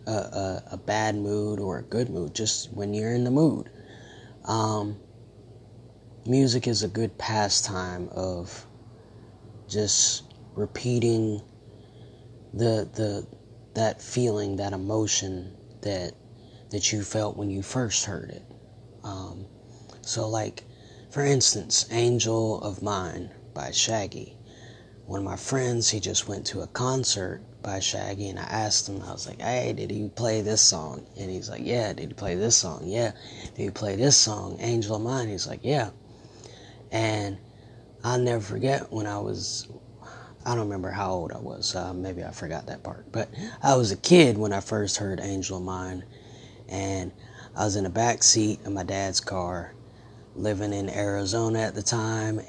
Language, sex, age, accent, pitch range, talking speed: English, male, 30-49, American, 100-115 Hz, 165 wpm